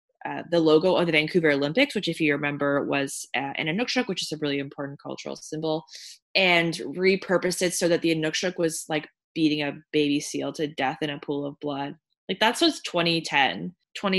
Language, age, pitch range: English, 20-39, 145-175 Hz